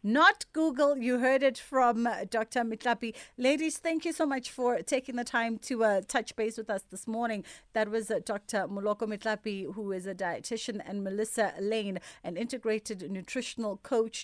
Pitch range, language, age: 205-245 Hz, English, 30-49